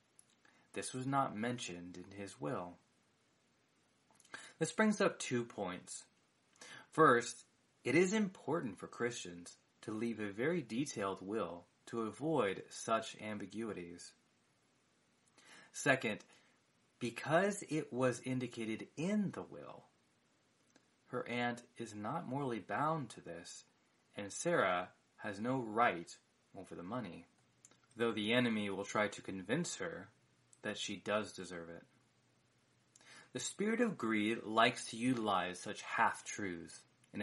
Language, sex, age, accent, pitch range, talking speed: English, male, 30-49, American, 95-125 Hz, 120 wpm